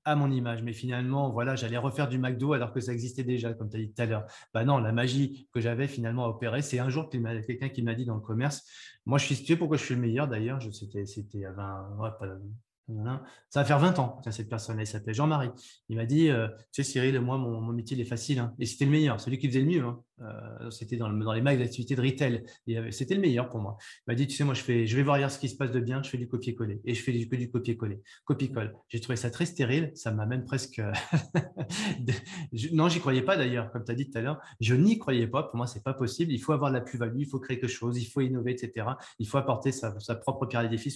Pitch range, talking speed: 115-140 Hz, 280 wpm